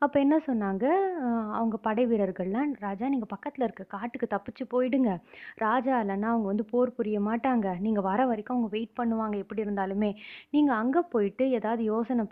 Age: 20-39